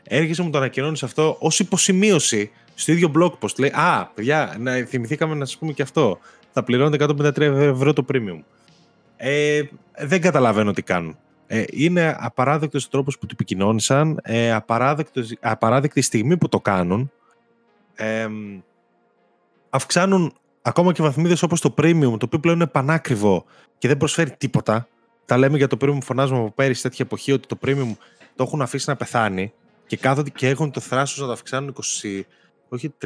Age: 20-39